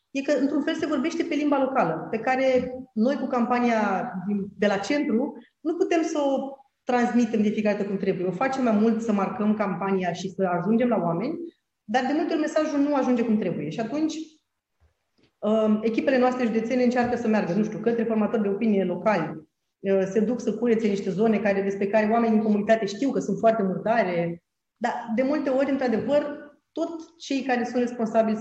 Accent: native